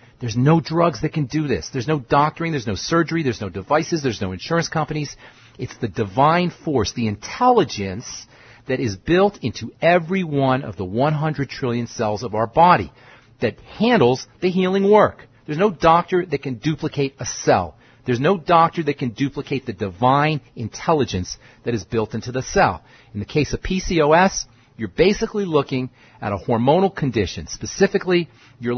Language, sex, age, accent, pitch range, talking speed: English, male, 40-59, American, 115-160 Hz, 170 wpm